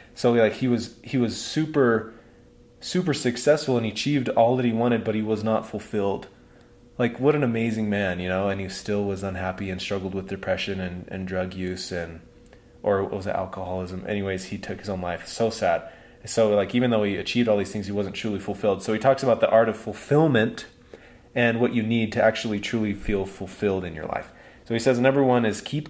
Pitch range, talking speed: 95-115 Hz, 220 wpm